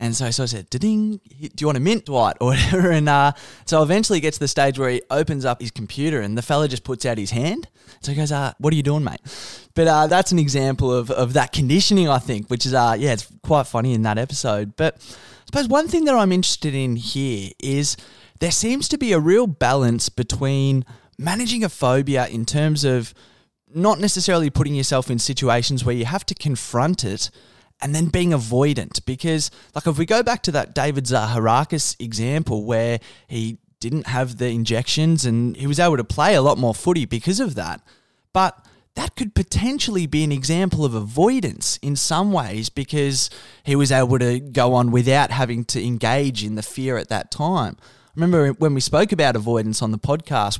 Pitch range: 120-160 Hz